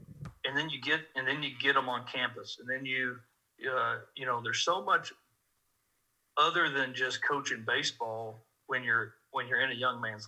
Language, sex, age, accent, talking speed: English, male, 50-69, American, 195 wpm